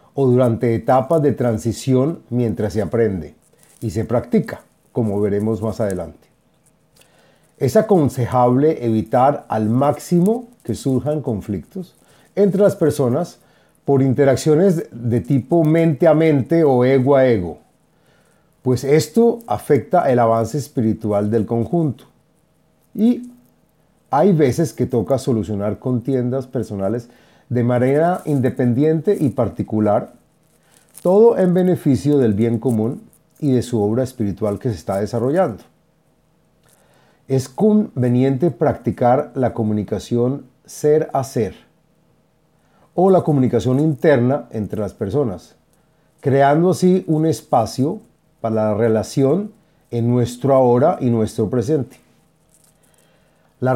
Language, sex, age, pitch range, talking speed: Spanish, male, 40-59, 115-160 Hz, 115 wpm